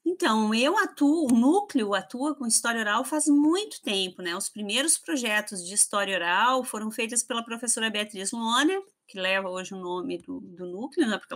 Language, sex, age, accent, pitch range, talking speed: Portuguese, female, 30-49, Brazilian, 210-305 Hz, 185 wpm